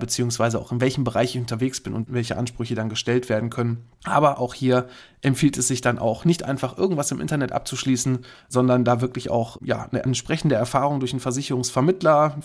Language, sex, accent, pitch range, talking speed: German, male, German, 125-150 Hz, 195 wpm